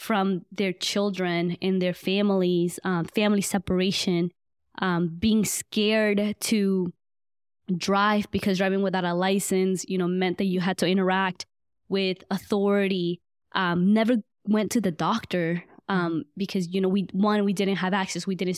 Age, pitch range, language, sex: 20-39, 180-205 Hz, English, female